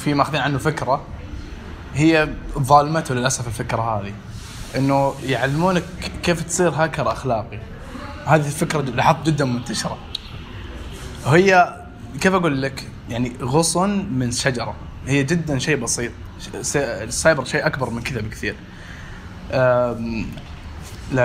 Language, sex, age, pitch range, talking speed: Arabic, male, 20-39, 115-150 Hz, 110 wpm